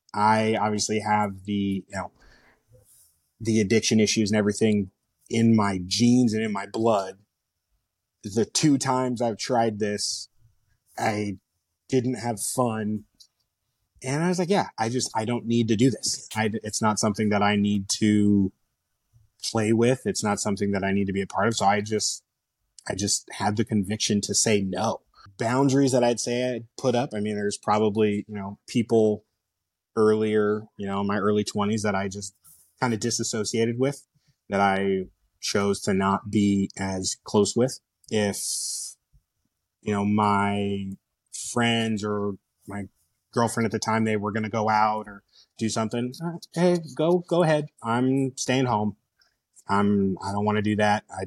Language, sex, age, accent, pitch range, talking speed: English, male, 30-49, American, 100-115 Hz, 170 wpm